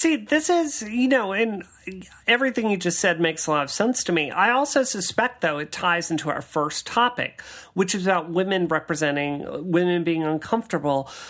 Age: 40-59